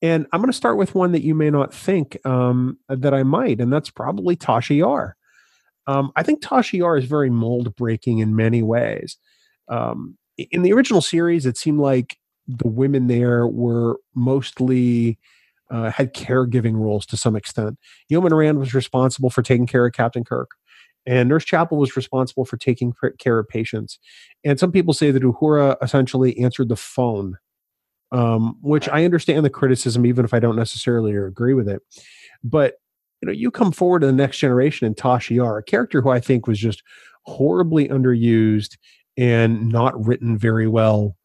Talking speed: 175 wpm